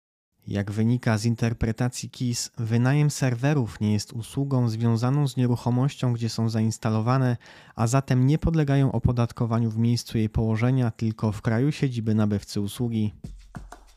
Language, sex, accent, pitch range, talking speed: Polish, male, native, 110-130 Hz, 135 wpm